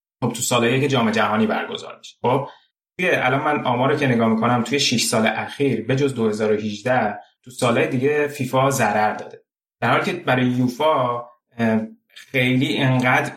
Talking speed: 160 wpm